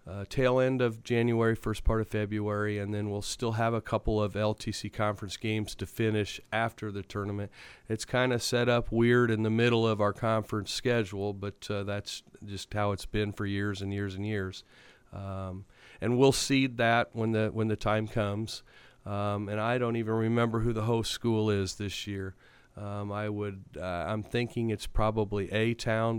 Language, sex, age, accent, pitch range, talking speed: English, male, 40-59, American, 100-115 Hz, 190 wpm